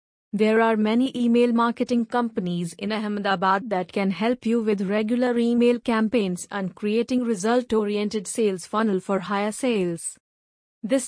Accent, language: Indian, English